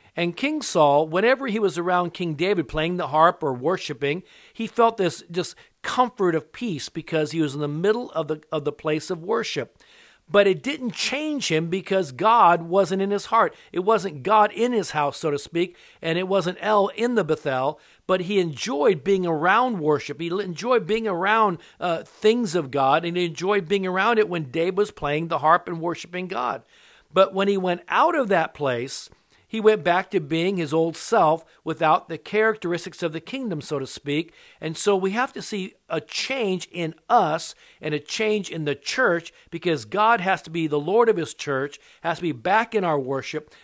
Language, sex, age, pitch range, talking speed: English, male, 50-69, 155-205 Hz, 200 wpm